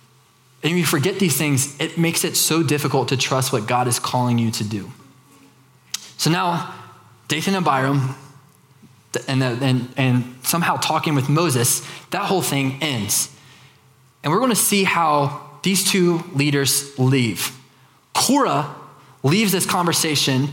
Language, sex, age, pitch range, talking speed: English, male, 20-39, 130-165 Hz, 145 wpm